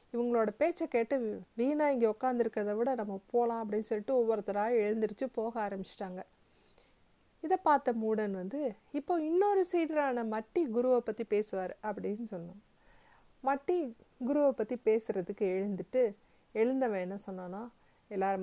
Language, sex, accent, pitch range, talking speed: Tamil, female, native, 205-270 Hz, 120 wpm